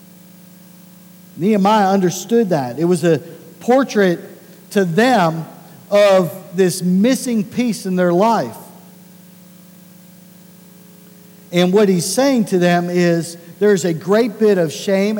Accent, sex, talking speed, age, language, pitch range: American, male, 115 wpm, 50-69, English, 165-200 Hz